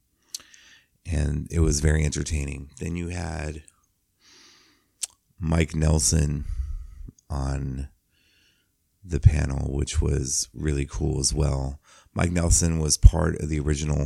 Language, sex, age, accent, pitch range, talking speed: English, male, 30-49, American, 75-85 Hz, 110 wpm